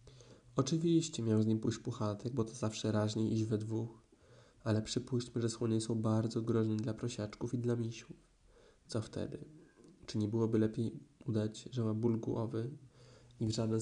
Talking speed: 170 wpm